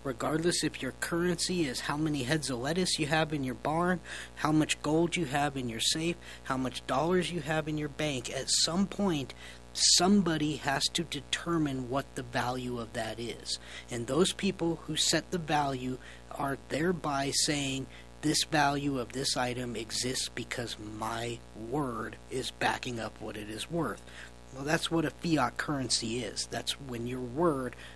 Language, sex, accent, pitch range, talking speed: English, male, American, 115-155 Hz, 175 wpm